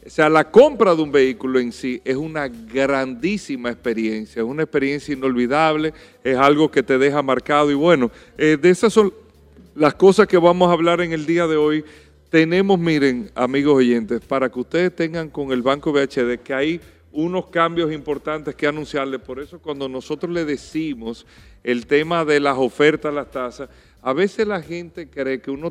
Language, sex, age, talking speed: Spanish, male, 40-59, 185 wpm